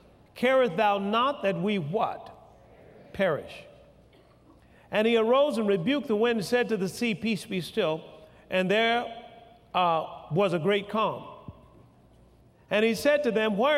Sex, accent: male, American